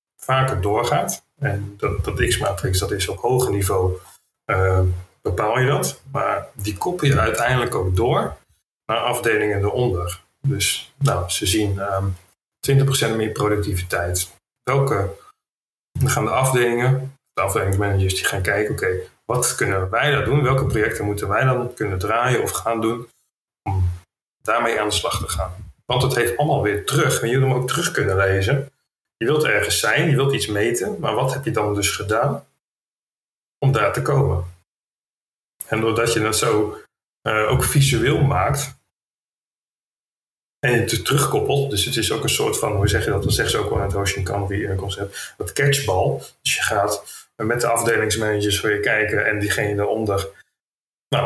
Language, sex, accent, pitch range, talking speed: Dutch, male, Dutch, 100-130 Hz, 175 wpm